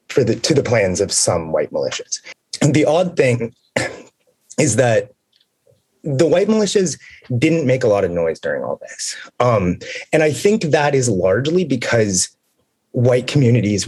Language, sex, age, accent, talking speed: English, male, 30-49, American, 160 wpm